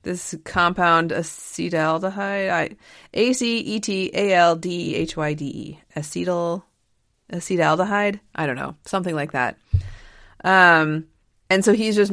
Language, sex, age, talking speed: English, female, 20-39, 80 wpm